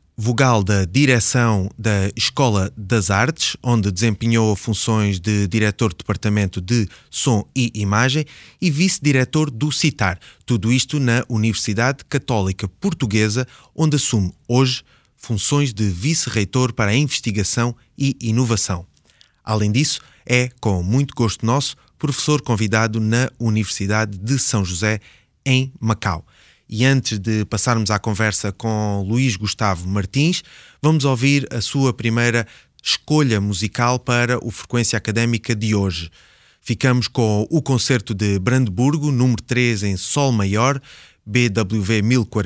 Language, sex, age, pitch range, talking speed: English, male, 20-39, 105-130 Hz, 125 wpm